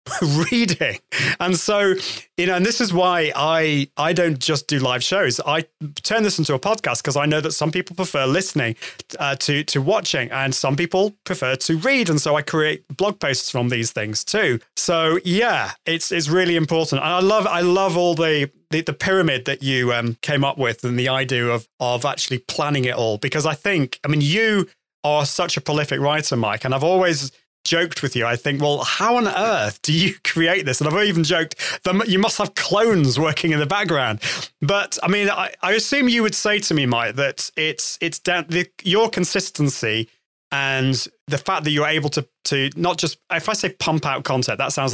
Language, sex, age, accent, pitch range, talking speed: English, male, 30-49, British, 135-180 Hz, 210 wpm